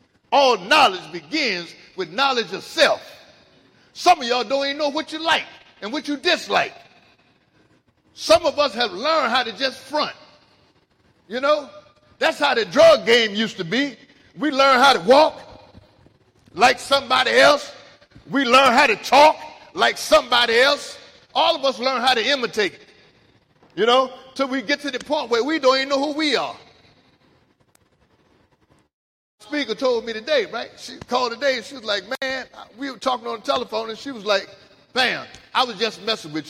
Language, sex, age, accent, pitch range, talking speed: English, male, 50-69, American, 220-285 Hz, 175 wpm